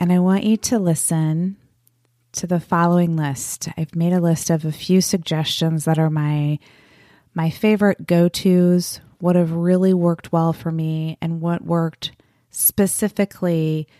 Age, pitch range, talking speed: 30-49, 150-195 Hz, 150 wpm